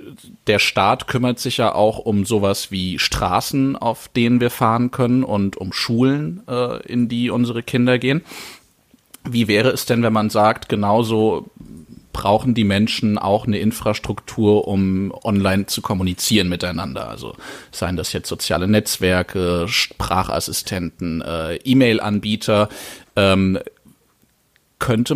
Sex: male